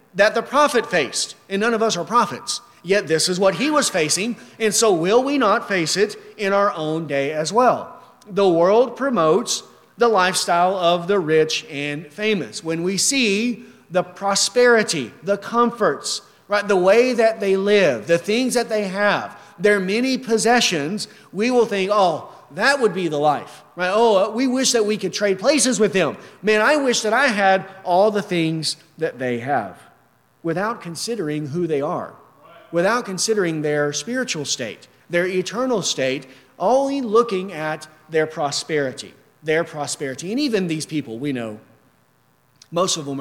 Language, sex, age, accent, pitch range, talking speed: English, male, 40-59, American, 150-220 Hz, 170 wpm